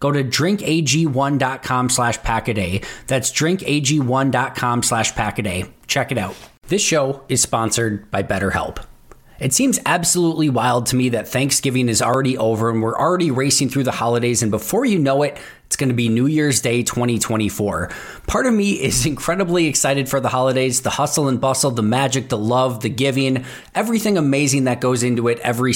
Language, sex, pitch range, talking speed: English, male, 115-145 Hz, 175 wpm